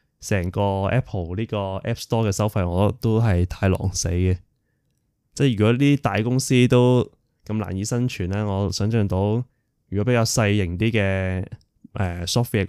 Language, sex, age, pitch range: Chinese, male, 20-39, 95-115 Hz